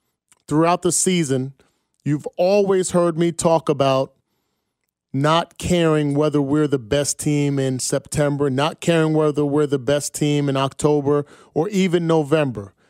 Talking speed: 140 wpm